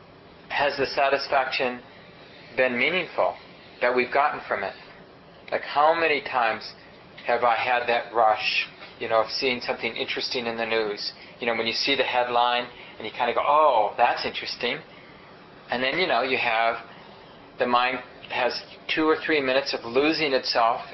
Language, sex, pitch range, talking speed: English, male, 115-135 Hz, 170 wpm